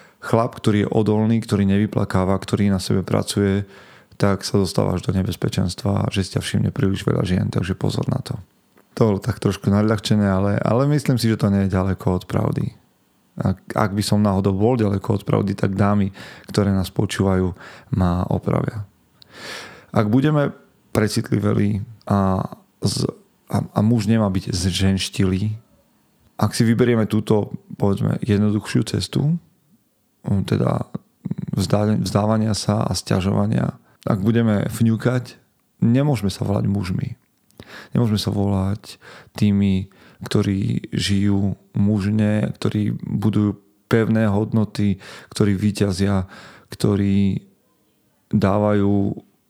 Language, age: Slovak, 30-49